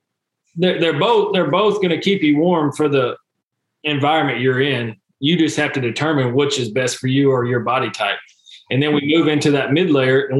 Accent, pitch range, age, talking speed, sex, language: American, 130-150 Hz, 20-39, 210 wpm, male, English